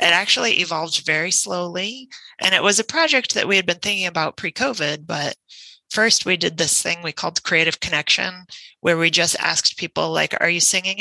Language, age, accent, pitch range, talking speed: English, 30-49, American, 155-185 Hz, 195 wpm